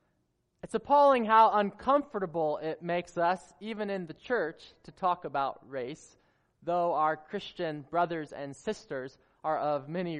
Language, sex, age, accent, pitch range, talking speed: English, male, 20-39, American, 155-215 Hz, 140 wpm